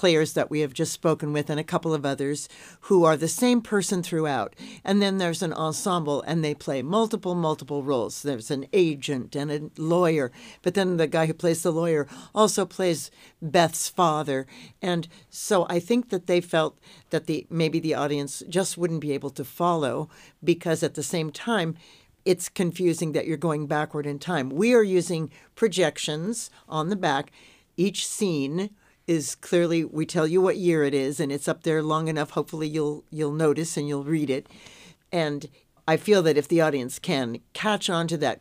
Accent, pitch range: American, 150-175 Hz